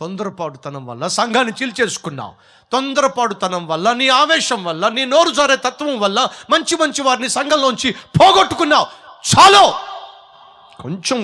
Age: 30-49